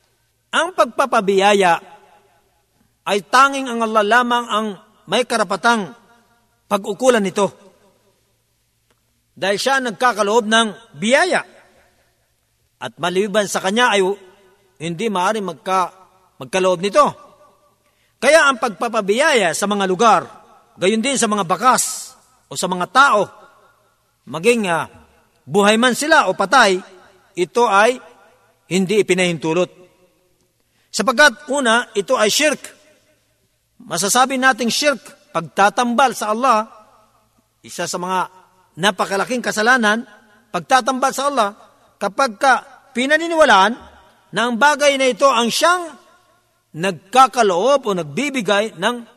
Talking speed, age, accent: 105 wpm, 50-69, native